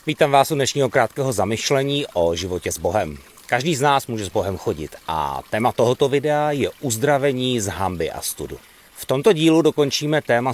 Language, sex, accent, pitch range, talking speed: Czech, male, native, 105-140 Hz, 180 wpm